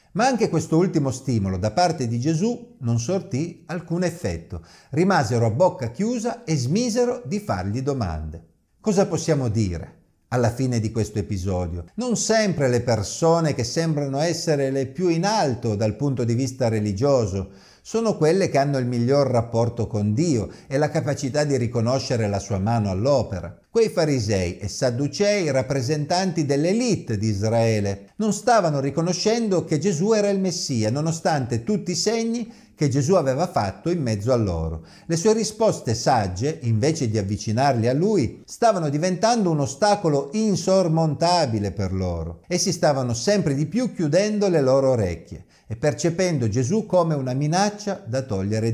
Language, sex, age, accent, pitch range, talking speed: Italian, male, 50-69, native, 115-180 Hz, 155 wpm